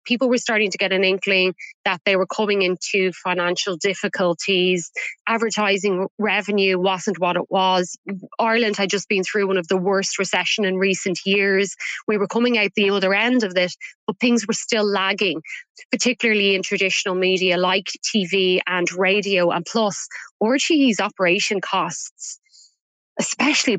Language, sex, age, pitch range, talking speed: English, female, 20-39, 185-215 Hz, 155 wpm